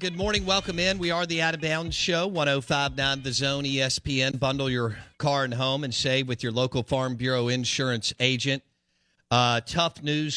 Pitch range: 115-140 Hz